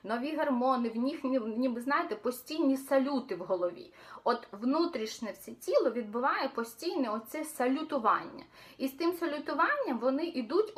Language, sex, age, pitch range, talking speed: Ukrainian, female, 30-49, 230-295 Hz, 135 wpm